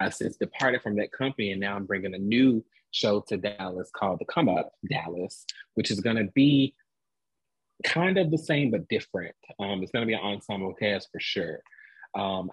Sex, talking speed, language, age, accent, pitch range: male, 200 wpm, English, 30-49, American, 100-120 Hz